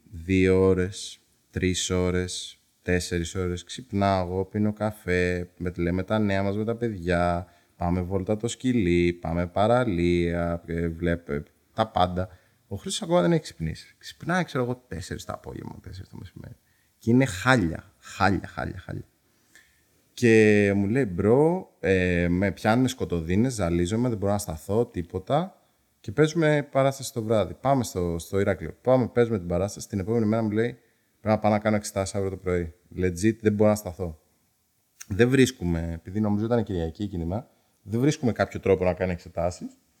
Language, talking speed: Greek, 165 wpm